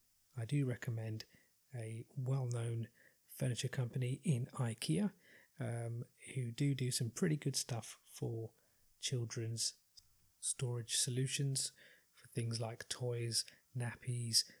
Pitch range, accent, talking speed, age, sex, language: 115-130 Hz, British, 105 wpm, 30-49, male, English